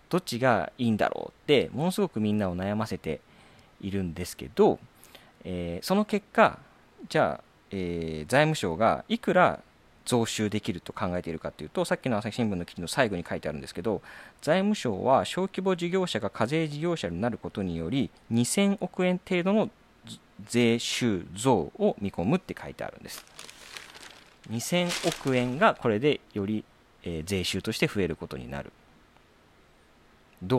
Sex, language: male, Japanese